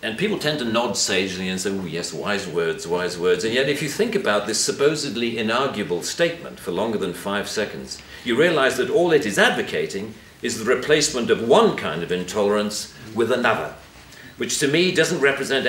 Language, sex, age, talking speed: English, male, 50-69, 195 wpm